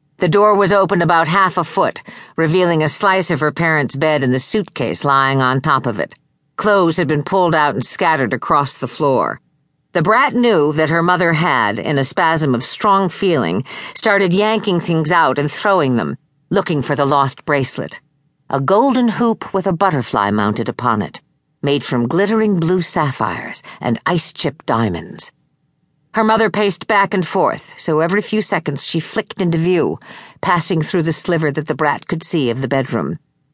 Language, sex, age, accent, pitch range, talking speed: English, female, 50-69, American, 145-205 Hz, 180 wpm